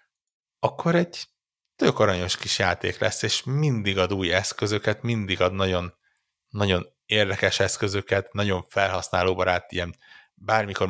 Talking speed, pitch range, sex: 125 wpm, 85-100 Hz, male